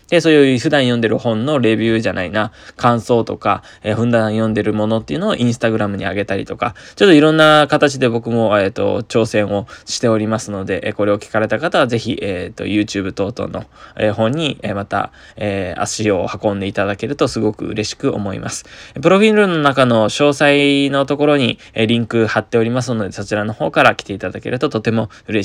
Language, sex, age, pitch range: Japanese, male, 20-39, 105-135 Hz